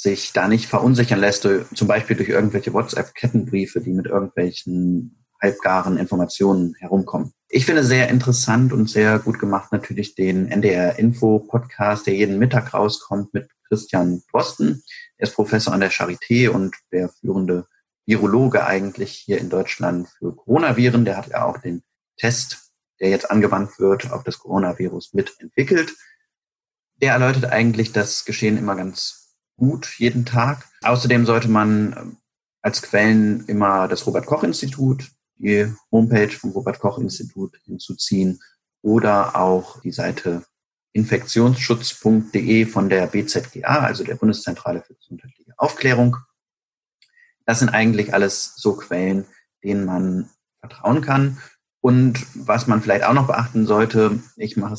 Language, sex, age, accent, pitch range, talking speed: German, male, 30-49, German, 100-120 Hz, 135 wpm